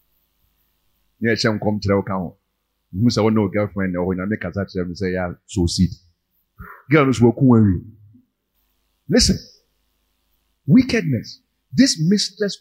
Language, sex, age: English, male, 50-69